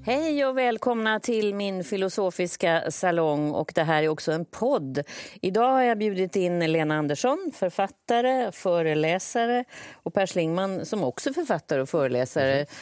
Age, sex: 30-49, female